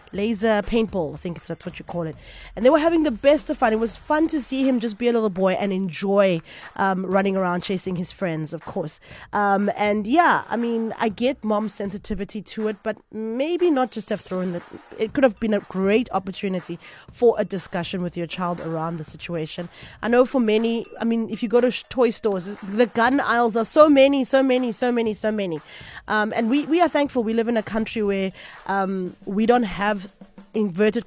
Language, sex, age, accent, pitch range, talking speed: English, female, 20-39, South African, 190-235 Hz, 210 wpm